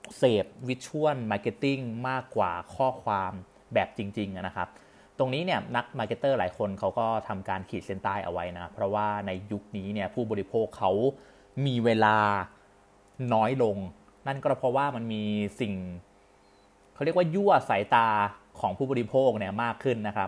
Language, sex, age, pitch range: Thai, male, 30-49, 100-125 Hz